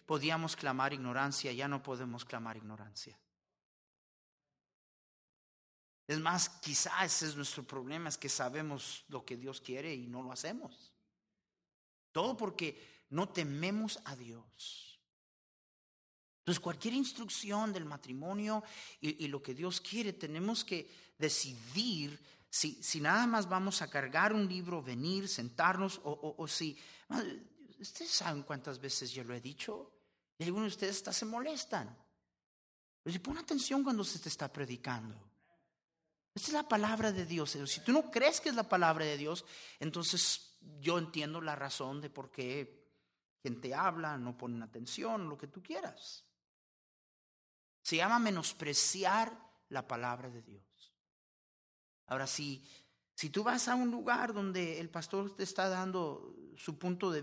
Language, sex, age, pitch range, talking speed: Spanish, male, 40-59, 135-195 Hz, 145 wpm